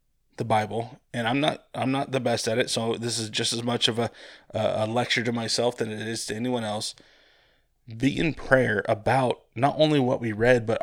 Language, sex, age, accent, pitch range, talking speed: English, male, 20-39, American, 110-125 Hz, 220 wpm